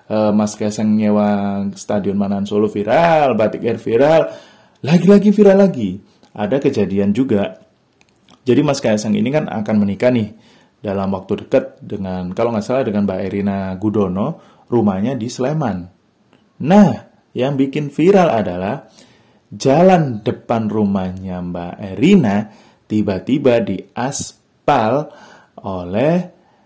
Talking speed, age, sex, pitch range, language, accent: 110 wpm, 30-49, male, 100-125 Hz, Indonesian, native